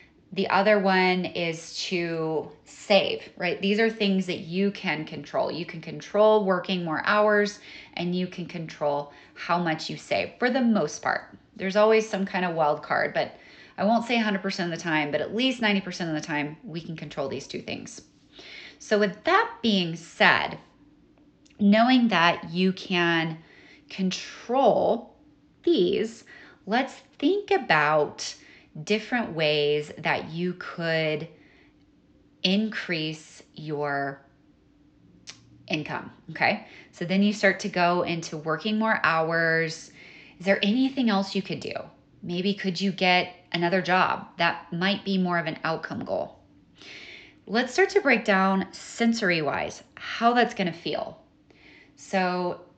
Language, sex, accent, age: English, female, American, 20-39